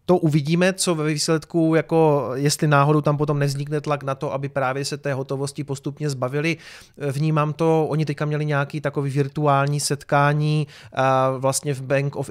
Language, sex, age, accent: Czech, male, 30-49, native